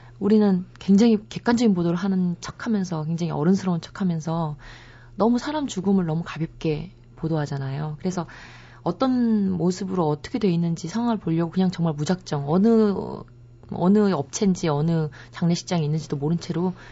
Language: Korean